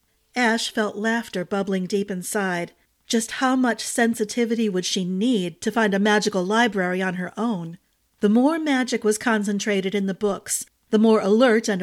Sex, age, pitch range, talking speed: female, 40-59, 190-230 Hz, 165 wpm